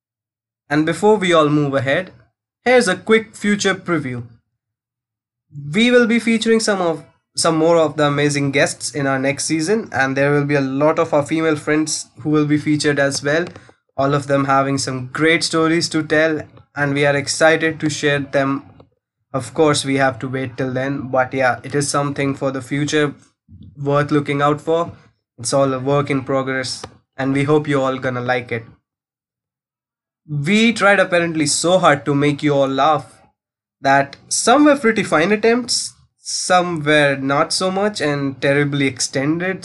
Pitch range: 130-160 Hz